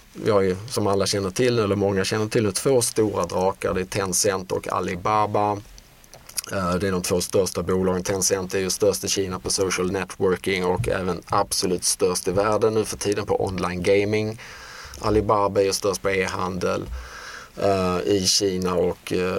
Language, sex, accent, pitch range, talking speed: Swedish, male, Norwegian, 95-110 Hz, 170 wpm